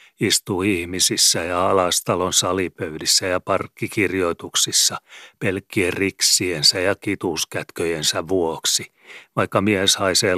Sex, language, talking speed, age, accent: male, Finnish, 85 wpm, 40-59, native